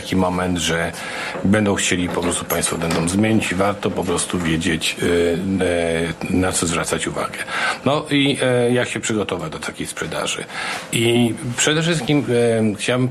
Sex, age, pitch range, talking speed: male, 50-69, 95-105 Hz, 135 wpm